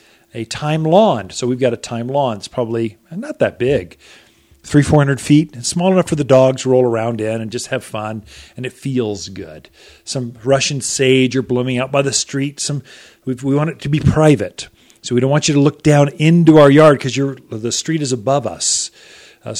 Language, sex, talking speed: English, male, 215 wpm